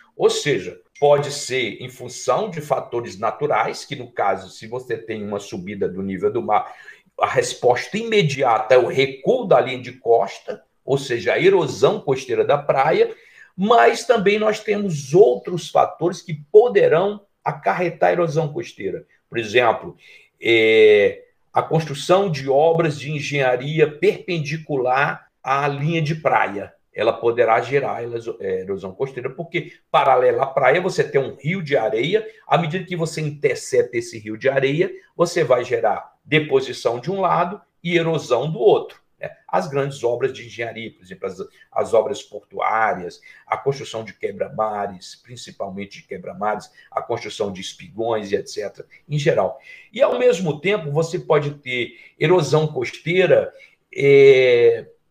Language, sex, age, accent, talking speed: Portuguese, male, 50-69, Brazilian, 145 wpm